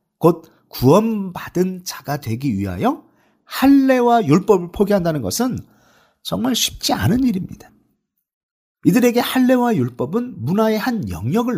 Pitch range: 150-235 Hz